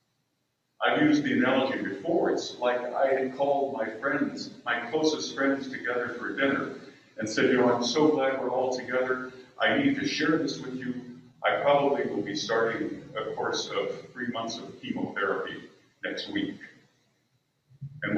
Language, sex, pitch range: English, male, 120-155 Hz